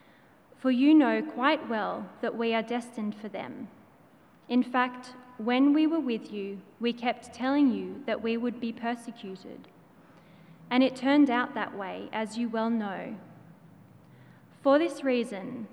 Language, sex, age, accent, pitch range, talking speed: English, female, 20-39, Australian, 225-270 Hz, 155 wpm